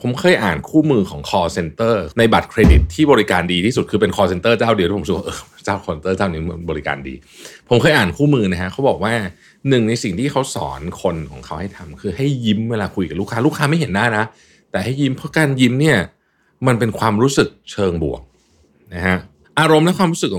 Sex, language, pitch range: male, Thai, 85-130 Hz